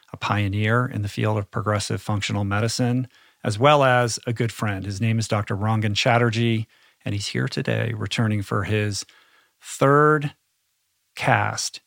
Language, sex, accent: English, male, American